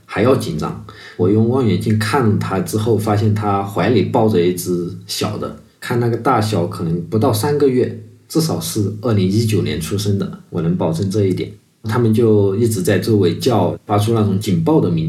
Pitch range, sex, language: 100-120 Hz, male, Chinese